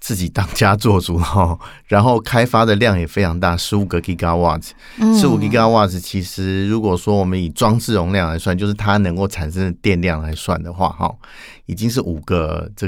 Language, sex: Chinese, male